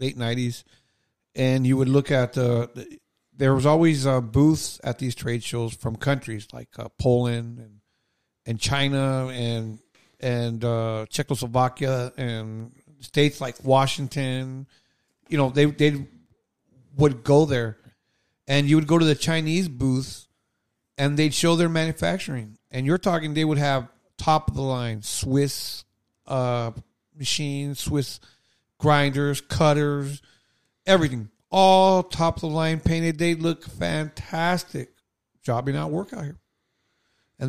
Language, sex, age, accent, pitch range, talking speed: English, male, 50-69, American, 120-160 Hz, 135 wpm